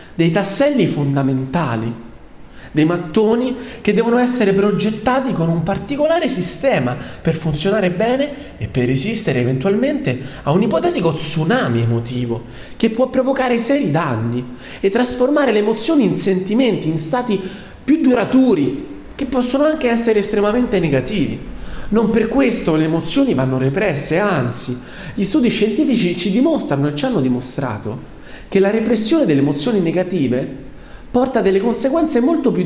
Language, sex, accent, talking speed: Italian, male, native, 135 wpm